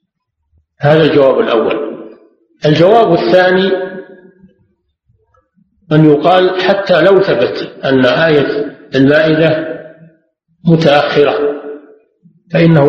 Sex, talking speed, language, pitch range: male, 70 wpm, Arabic, 135-185 Hz